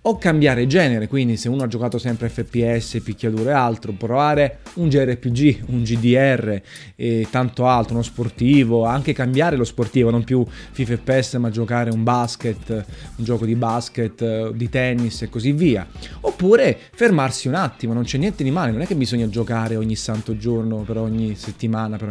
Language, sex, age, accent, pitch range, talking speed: Italian, male, 20-39, native, 115-140 Hz, 180 wpm